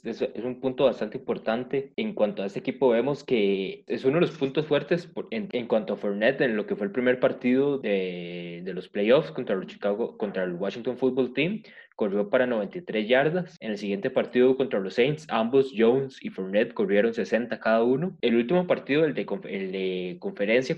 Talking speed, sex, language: 200 wpm, male, Spanish